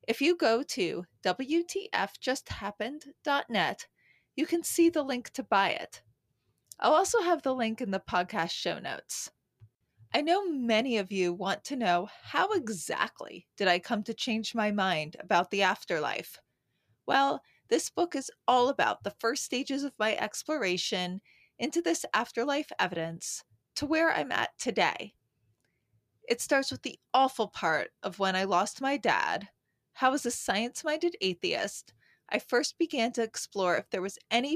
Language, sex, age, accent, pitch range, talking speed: English, female, 20-39, American, 185-270 Hz, 155 wpm